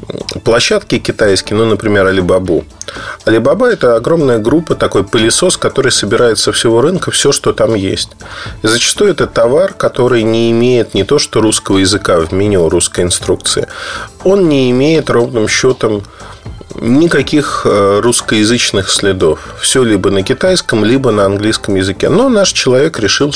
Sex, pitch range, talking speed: male, 105-130 Hz, 140 wpm